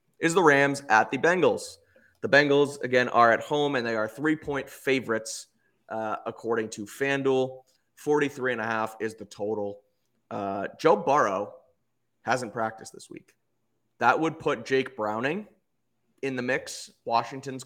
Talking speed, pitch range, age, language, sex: 140 wpm, 105-130 Hz, 20-39, English, male